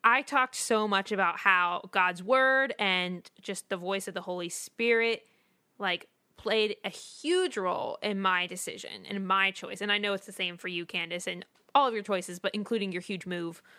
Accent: American